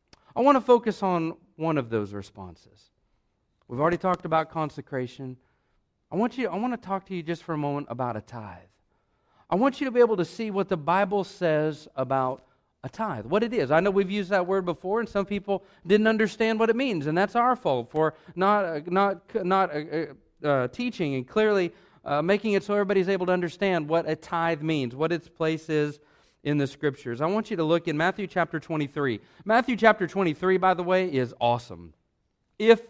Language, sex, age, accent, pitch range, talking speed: English, male, 40-59, American, 155-215 Hz, 205 wpm